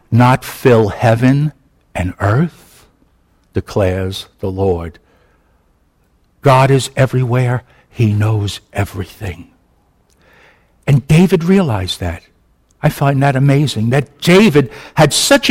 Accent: American